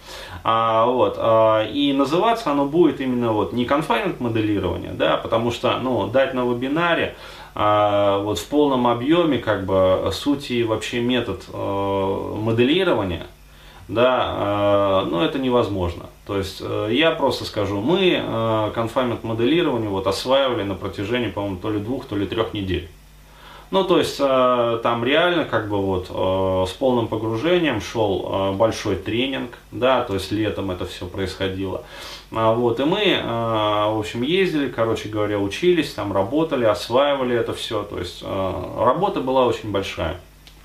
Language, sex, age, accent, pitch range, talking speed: Russian, male, 30-49, native, 95-125 Hz, 145 wpm